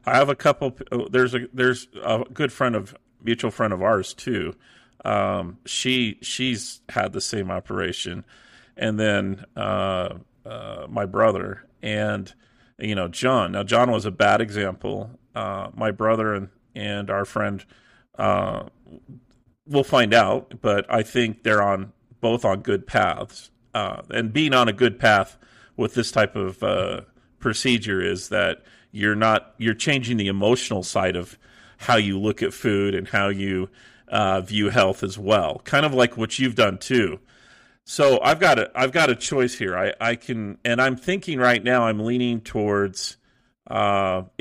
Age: 40-59